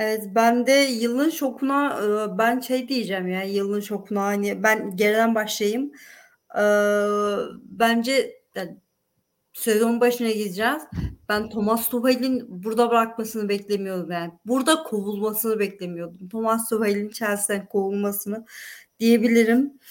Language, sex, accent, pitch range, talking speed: Turkish, female, native, 210-255 Hz, 105 wpm